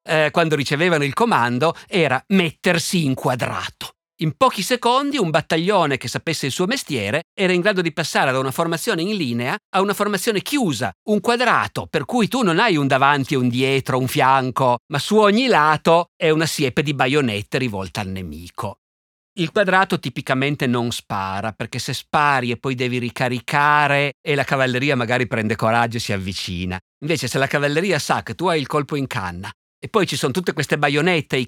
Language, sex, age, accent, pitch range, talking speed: Italian, male, 50-69, native, 120-175 Hz, 190 wpm